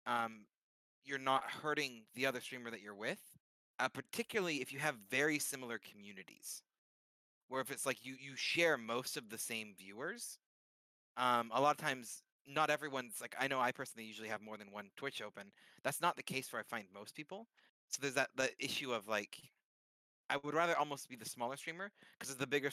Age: 30-49